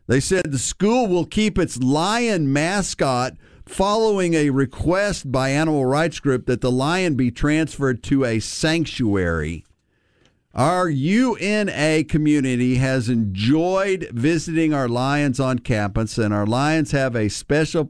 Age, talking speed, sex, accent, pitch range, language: 50-69, 135 wpm, male, American, 120-155 Hz, English